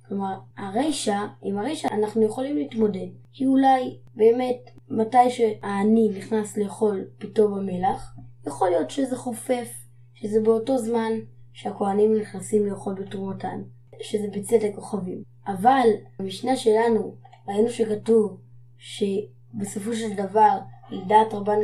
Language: Hebrew